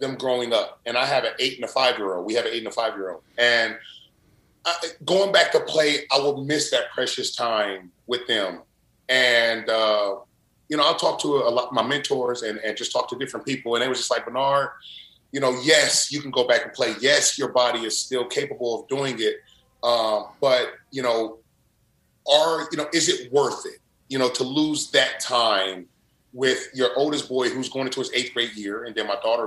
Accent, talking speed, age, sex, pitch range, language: American, 215 wpm, 30-49, male, 115-145 Hz, English